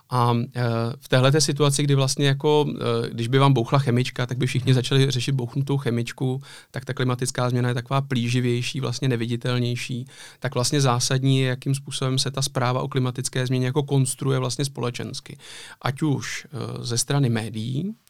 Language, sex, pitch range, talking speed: Czech, male, 120-135 Hz, 160 wpm